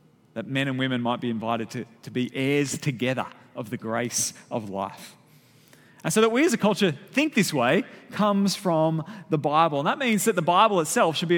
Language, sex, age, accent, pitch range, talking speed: English, male, 30-49, Australian, 130-175 Hz, 210 wpm